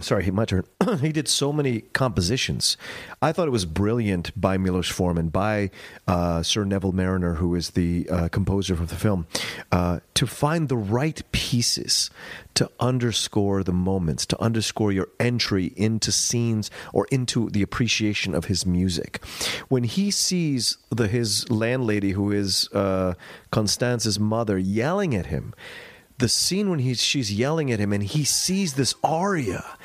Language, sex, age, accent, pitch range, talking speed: English, male, 40-59, American, 100-140 Hz, 160 wpm